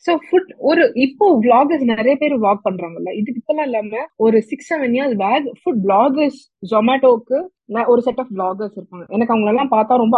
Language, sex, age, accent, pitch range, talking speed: Tamil, female, 20-39, native, 200-275 Hz, 125 wpm